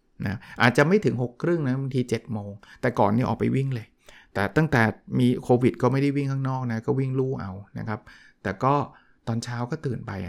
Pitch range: 115-135 Hz